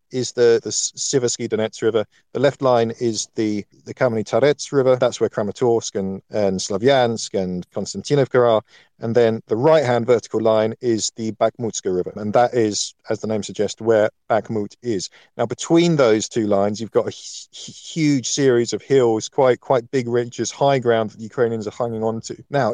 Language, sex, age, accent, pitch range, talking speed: English, male, 50-69, British, 110-130 Hz, 185 wpm